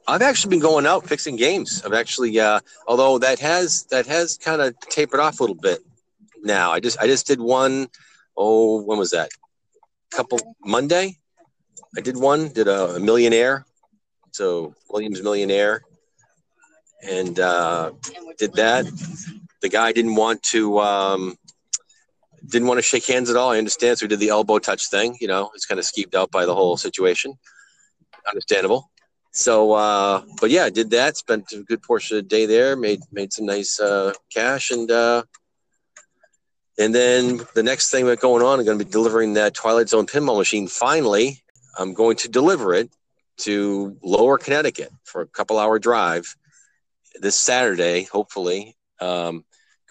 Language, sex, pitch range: English, male, 105-155 Hz